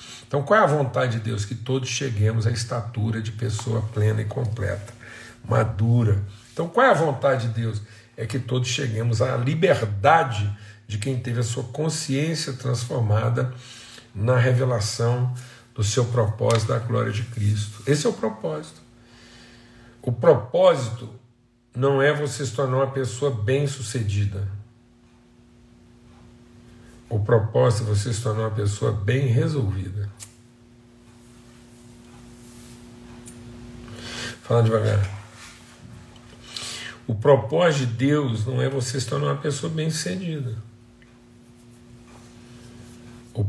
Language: Portuguese